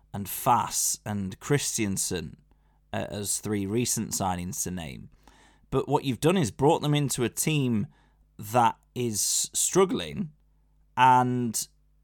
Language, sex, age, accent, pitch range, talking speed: English, male, 20-39, British, 100-130 Hz, 125 wpm